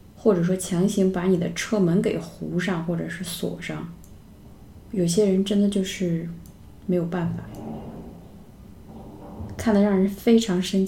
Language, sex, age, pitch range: Chinese, female, 20-39, 180-220 Hz